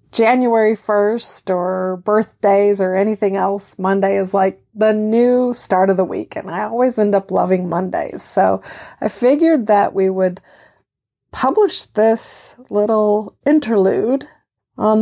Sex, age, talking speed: female, 40-59, 135 wpm